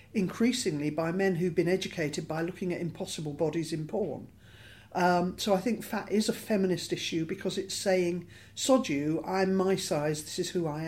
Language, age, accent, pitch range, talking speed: English, 50-69, British, 155-190 Hz, 190 wpm